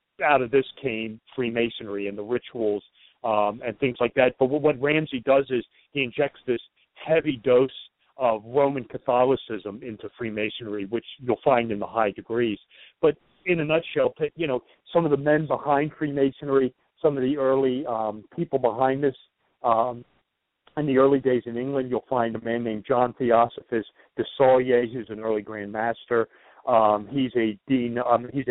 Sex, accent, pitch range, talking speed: male, American, 115-130 Hz, 175 wpm